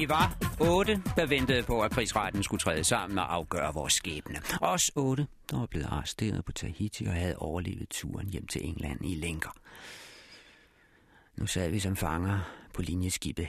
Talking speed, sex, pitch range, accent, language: 175 wpm, male, 80-115 Hz, native, Danish